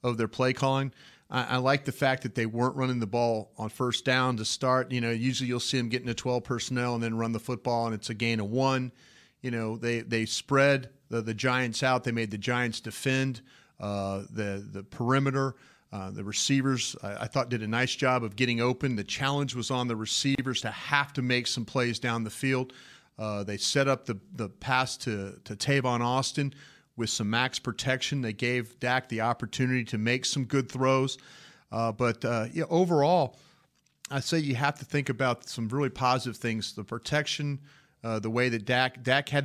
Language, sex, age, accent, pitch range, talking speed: English, male, 40-59, American, 115-135 Hz, 210 wpm